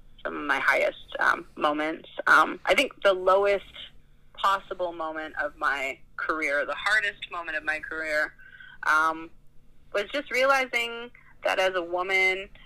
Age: 30-49